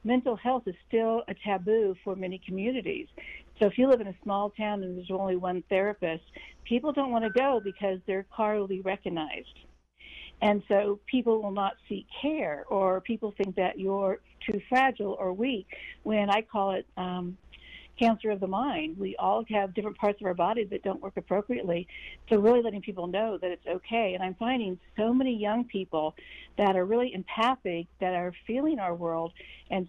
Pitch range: 190-225 Hz